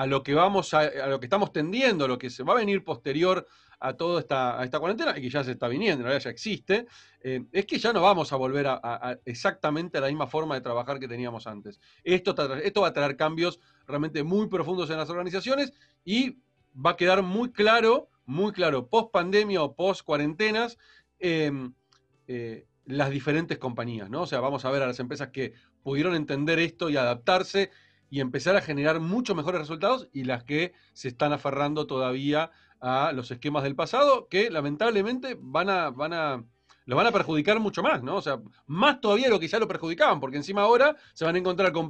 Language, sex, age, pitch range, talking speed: Spanish, male, 40-59, 135-195 Hz, 210 wpm